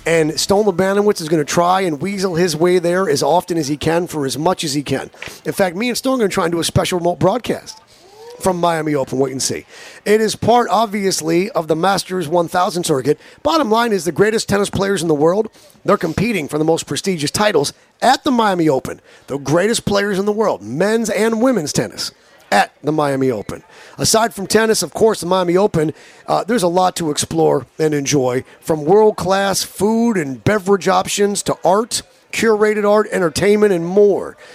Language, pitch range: English, 165-215 Hz